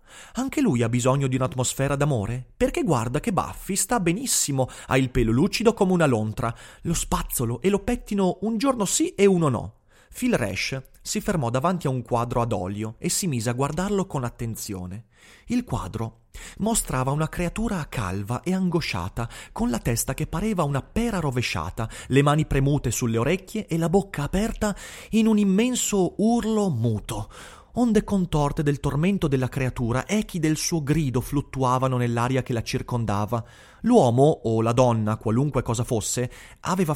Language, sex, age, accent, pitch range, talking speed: Italian, male, 30-49, native, 120-190 Hz, 165 wpm